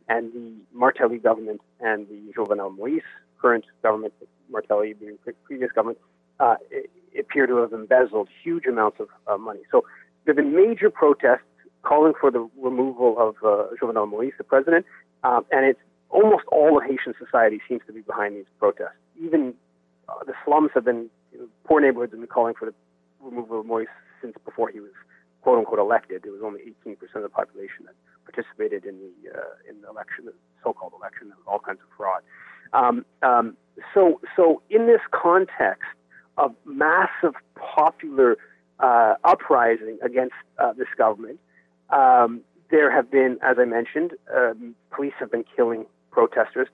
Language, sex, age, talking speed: English, male, 30-49, 165 wpm